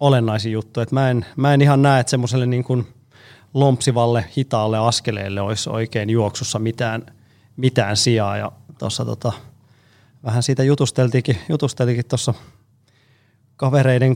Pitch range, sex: 115-130 Hz, male